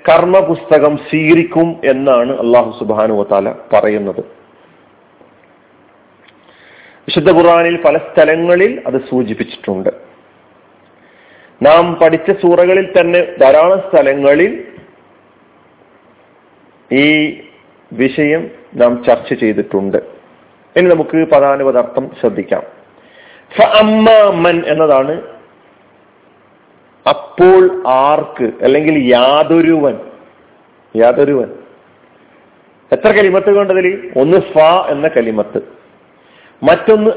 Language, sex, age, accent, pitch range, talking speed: Malayalam, male, 40-59, native, 135-185 Hz, 70 wpm